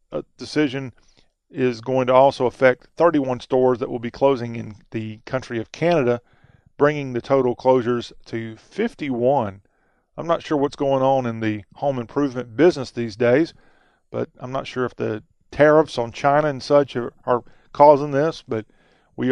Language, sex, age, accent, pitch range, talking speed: English, male, 40-59, American, 120-145 Hz, 170 wpm